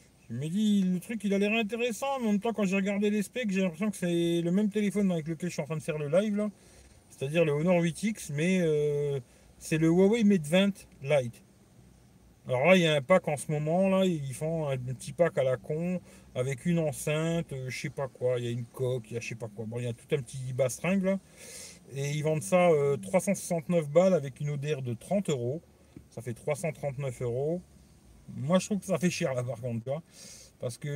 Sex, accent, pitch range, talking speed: male, French, 135-185 Hz, 245 wpm